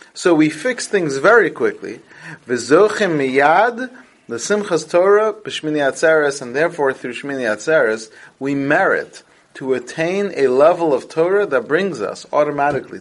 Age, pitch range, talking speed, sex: 30-49, 140-195 Hz, 130 wpm, male